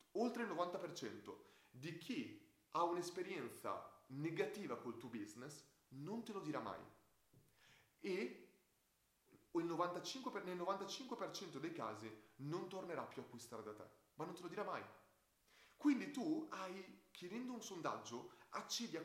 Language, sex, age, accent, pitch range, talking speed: Italian, male, 30-49, native, 145-210 Hz, 130 wpm